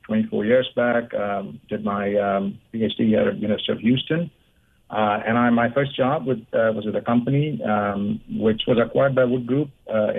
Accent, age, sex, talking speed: Indian, 50-69, male, 200 wpm